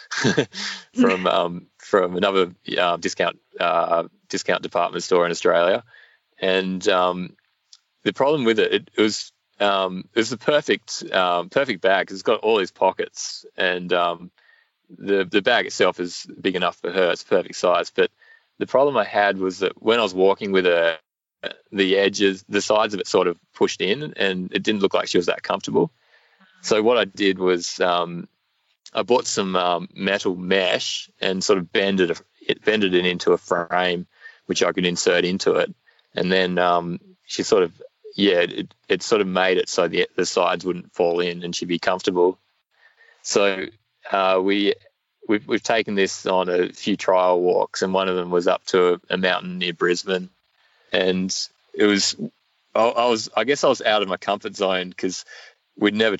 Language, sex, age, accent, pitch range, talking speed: English, male, 20-39, Australian, 90-100 Hz, 185 wpm